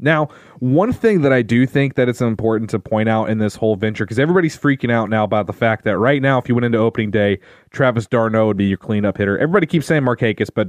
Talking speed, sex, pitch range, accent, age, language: 260 wpm, male, 105-130 Hz, American, 30-49, English